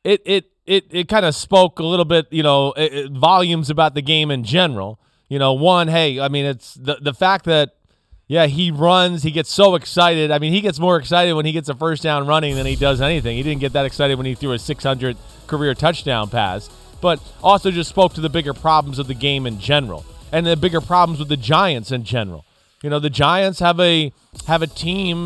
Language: English